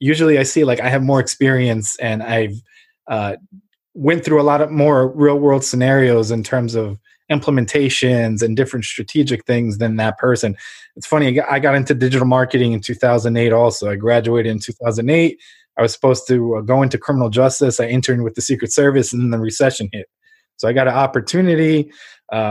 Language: English